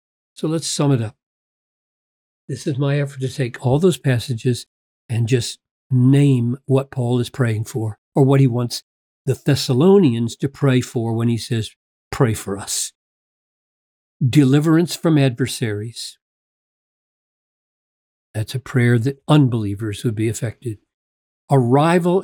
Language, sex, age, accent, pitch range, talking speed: English, male, 50-69, American, 115-145 Hz, 130 wpm